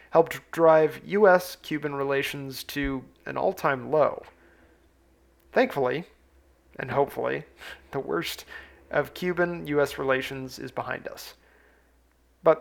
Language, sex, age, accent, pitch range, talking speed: English, male, 30-49, American, 130-160 Hz, 95 wpm